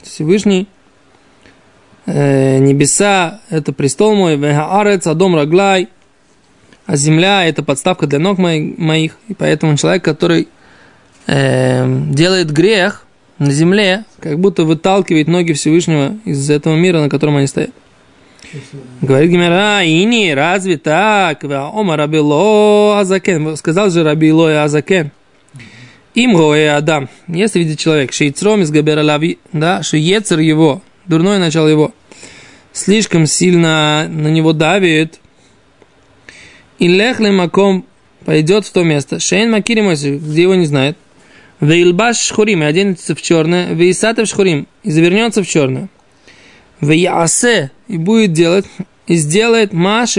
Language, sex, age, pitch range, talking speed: Russian, male, 20-39, 150-195 Hz, 120 wpm